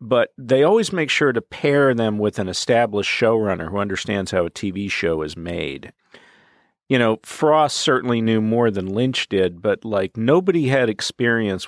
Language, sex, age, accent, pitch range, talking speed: English, male, 50-69, American, 95-125 Hz, 175 wpm